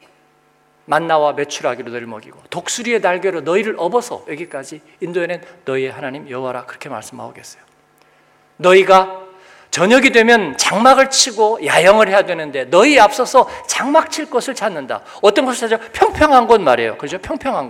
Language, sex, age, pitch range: Korean, male, 50-69, 170-250 Hz